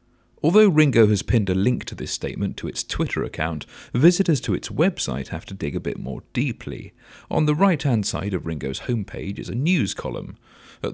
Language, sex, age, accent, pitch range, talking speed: English, male, 40-59, British, 85-125 Hz, 195 wpm